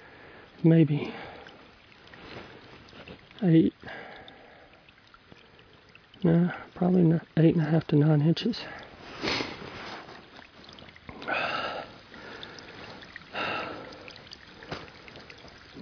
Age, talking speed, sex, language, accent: 40-59, 40 wpm, male, English, American